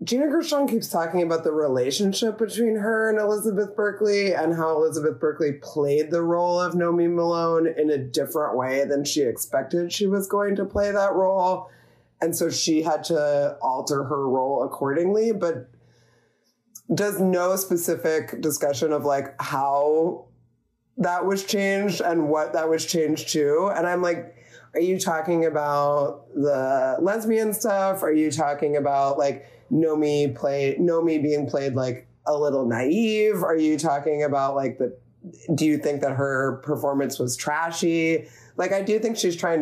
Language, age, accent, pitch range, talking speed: English, 20-39, American, 145-190 Hz, 165 wpm